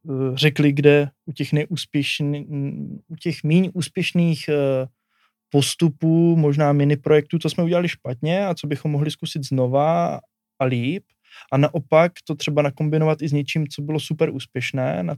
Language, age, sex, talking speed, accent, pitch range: Czech, 20-39, male, 140 wpm, native, 135-155 Hz